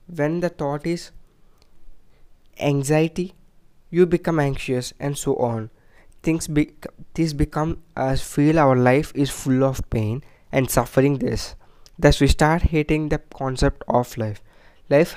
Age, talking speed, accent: 20-39, 130 wpm, Indian